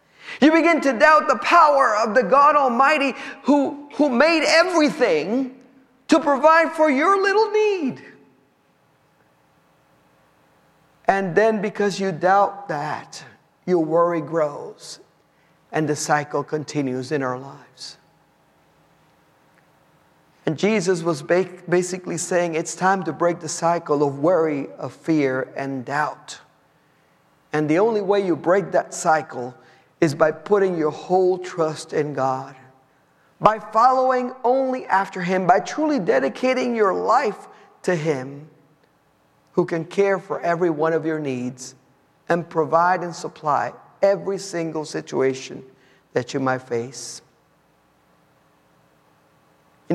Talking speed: 125 wpm